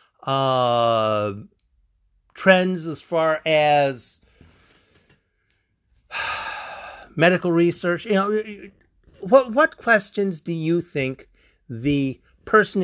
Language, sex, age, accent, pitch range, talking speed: English, male, 50-69, American, 140-190 Hz, 80 wpm